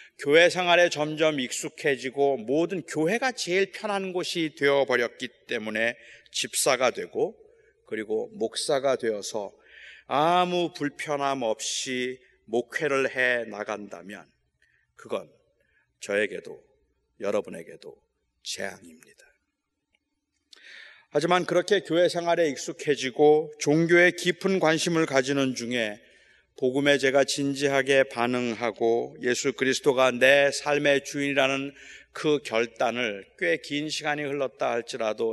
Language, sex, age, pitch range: Korean, male, 30-49, 130-170 Hz